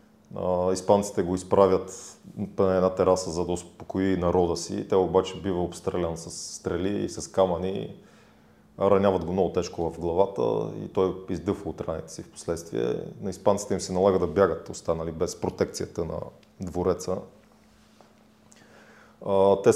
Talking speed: 140 wpm